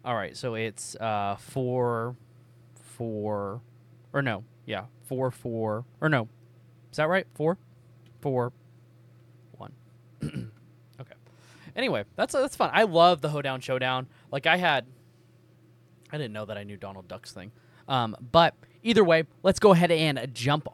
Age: 20-39